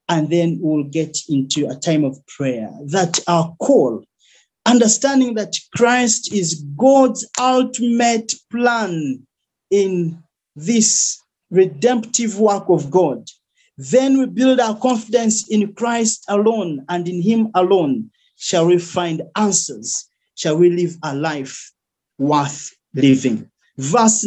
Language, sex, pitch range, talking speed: English, male, 175-255 Hz, 120 wpm